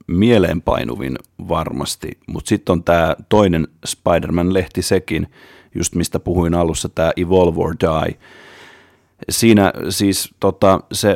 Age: 30-49